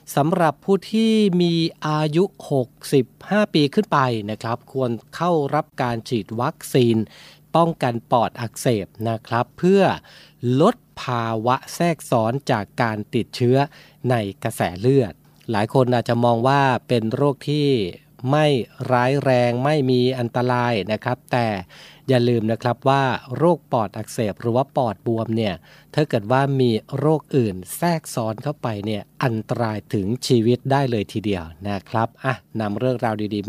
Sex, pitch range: male, 115-140 Hz